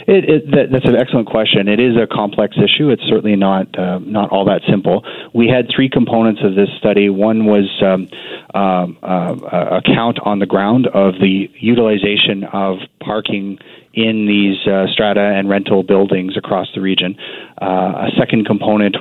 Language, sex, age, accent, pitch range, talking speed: English, male, 30-49, American, 95-115 Hz, 175 wpm